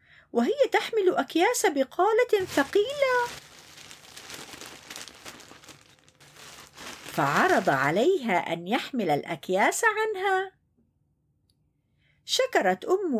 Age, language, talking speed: 50-69, Arabic, 60 wpm